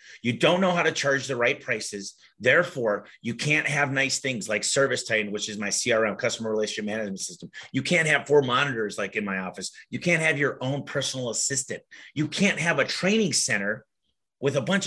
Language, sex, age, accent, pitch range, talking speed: English, male, 30-49, American, 110-150 Hz, 205 wpm